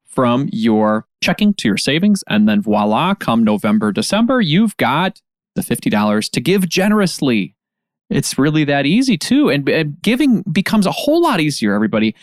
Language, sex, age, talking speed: English, male, 30-49, 160 wpm